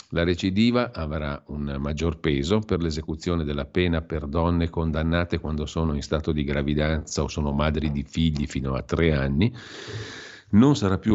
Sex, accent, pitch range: male, native, 75-95 Hz